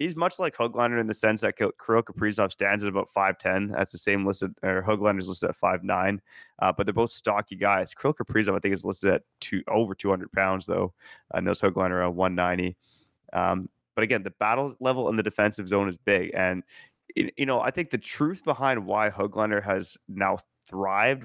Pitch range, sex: 95-120 Hz, male